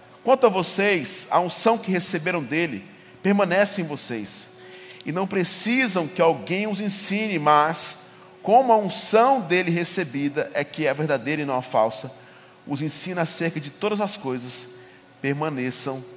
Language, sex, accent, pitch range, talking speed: Portuguese, male, Brazilian, 115-160 Hz, 150 wpm